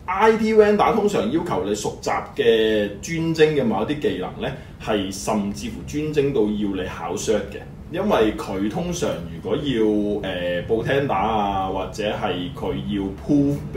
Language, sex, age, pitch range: Chinese, male, 20-39, 100-145 Hz